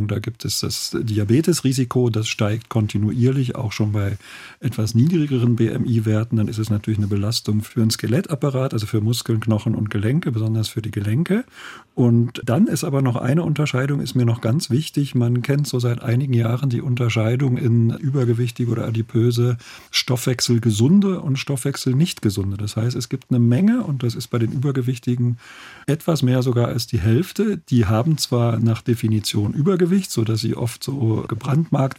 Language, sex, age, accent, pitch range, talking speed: German, male, 50-69, German, 115-140 Hz, 175 wpm